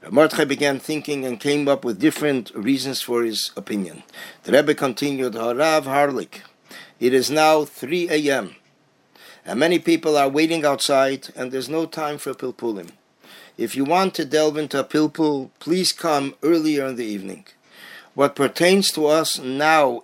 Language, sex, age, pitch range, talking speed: English, male, 50-69, 130-155 Hz, 165 wpm